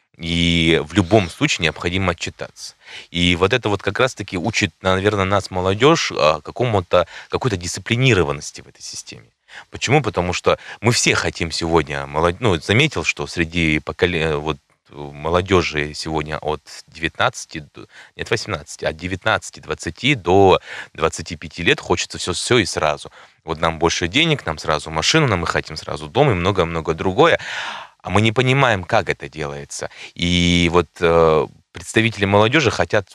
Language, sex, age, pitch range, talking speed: Russian, male, 20-39, 85-105 Hz, 145 wpm